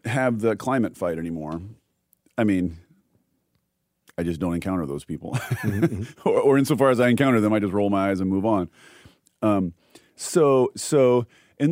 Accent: American